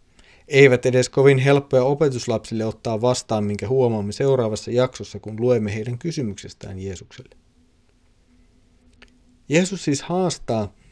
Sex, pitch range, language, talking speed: male, 100-135 Hz, Finnish, 105 wpm